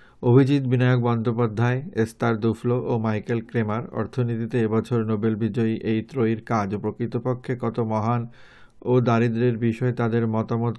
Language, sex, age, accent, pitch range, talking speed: Bengali, male, 60-79, native, 110-120 Hz, 140 wpm